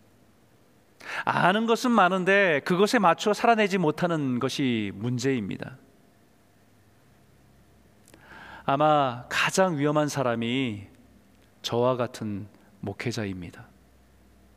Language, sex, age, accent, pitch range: Korean, male, 40-59, native, 120-185 Hz